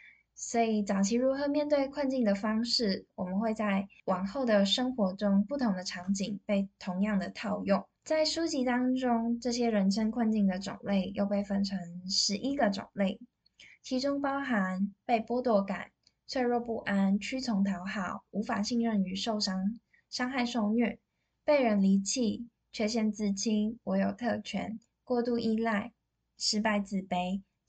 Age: 10-29